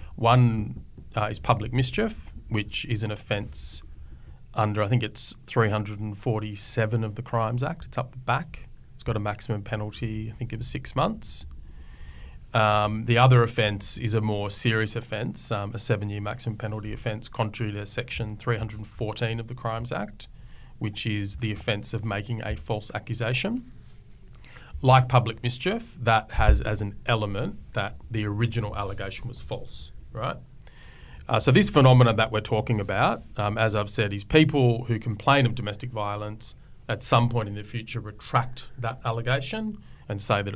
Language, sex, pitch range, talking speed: English, male, 105-125 Hz, 165 wpm